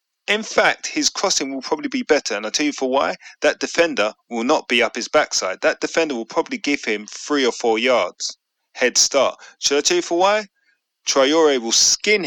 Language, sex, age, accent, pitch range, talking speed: English, male, 30-49, British, 115-175 Hz, 210 wpm